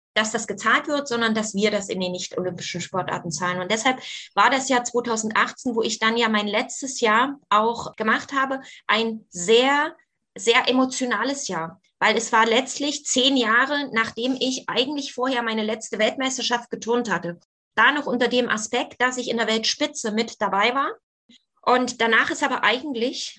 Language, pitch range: German, 220-255 Hz